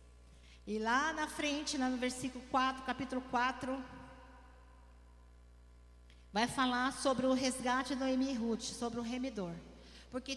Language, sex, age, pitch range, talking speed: Portuguese, female, 40-59, 230-270 Hz, 125 wpm